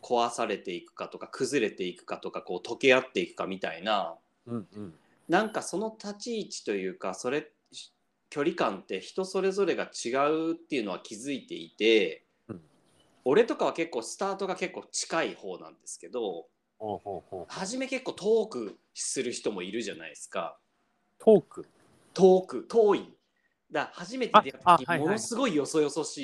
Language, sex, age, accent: Japanese, male, 40-59, native